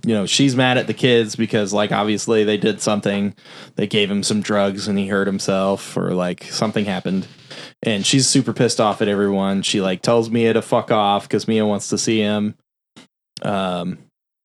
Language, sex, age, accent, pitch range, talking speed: English, male, 20-39, American, 100-120 Hz, 195 wpm